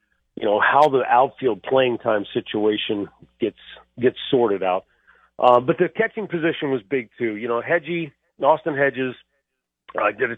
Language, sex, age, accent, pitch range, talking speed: English, male, 40-59, American, 115-155 Hz, 160 wpm